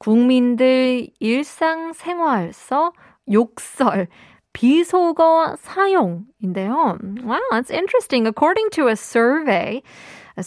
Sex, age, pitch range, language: female, 20-39, 200-260 Hz, Korean